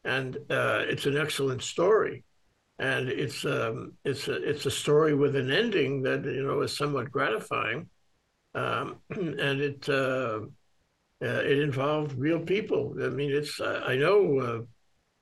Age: 60-79